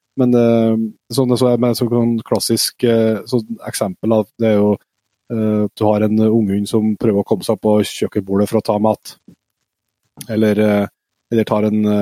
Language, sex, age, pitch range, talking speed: English, male, 20-39, 110-125 Hz, 170 wpm